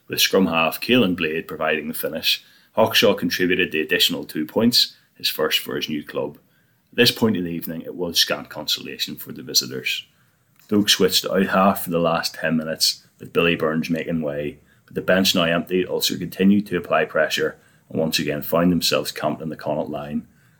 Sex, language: male, English